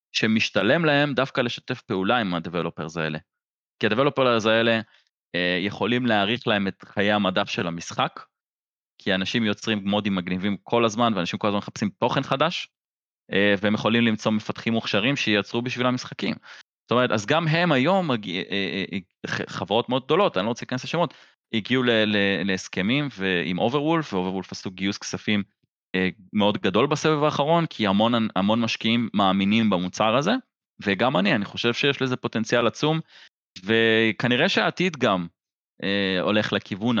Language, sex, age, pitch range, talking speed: Hebrew, male, 20-39, 95-120 Hz, 155 wpm